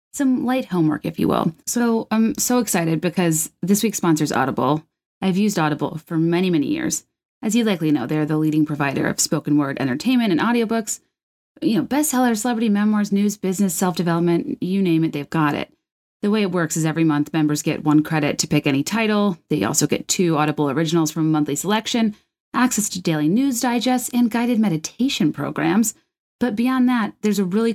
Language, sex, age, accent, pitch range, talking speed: English, female, 30-49, American, 155-220 Hz, 195 wpm